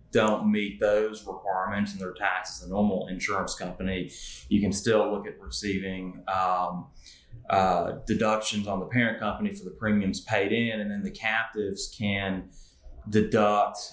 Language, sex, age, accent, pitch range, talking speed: English, male, 30-49, American, 90-105 Hz, 150 wpm